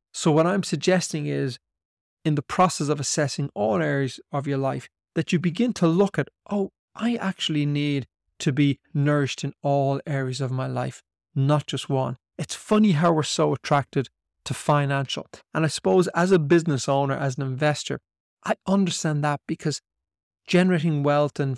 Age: 30-49